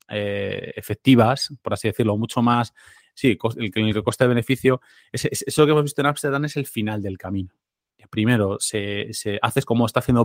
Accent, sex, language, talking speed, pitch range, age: Spanish, male, Spanish, 200 wpm, 105-120 Hz, 30-49